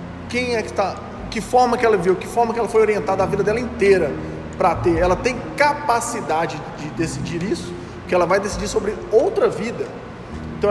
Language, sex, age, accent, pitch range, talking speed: Portuguese, male, 20-39, Brazilian, 160-215 Hz, 195 wpm